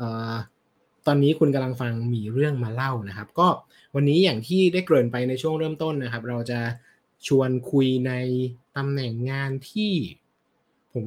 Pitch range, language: 125-150 Hz, Thai